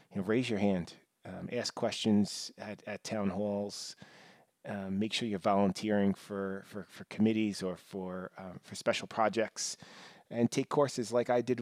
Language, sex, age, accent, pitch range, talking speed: English, male, 30-49, American, 95-110 Hz, 170 wpm